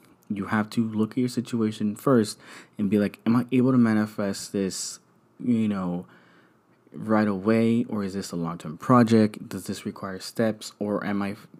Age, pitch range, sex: 20-39, 95-115 Hz, male